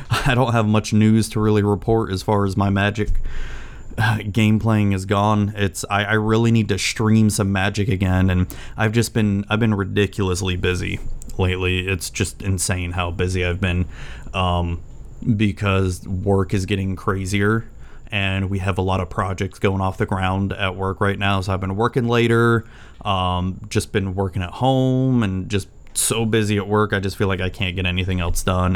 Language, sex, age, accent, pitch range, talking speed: English, male, 30-49, American, 95-110 Hz, 190 wpm